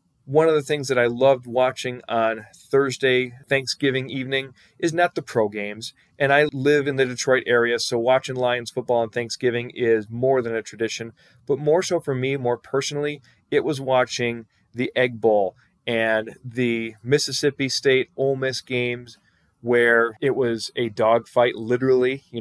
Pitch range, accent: 115-130 Hz, American